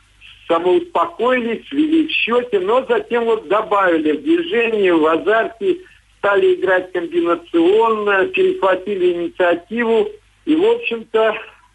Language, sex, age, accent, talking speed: Russian, male, 60-79, native, 100 wpm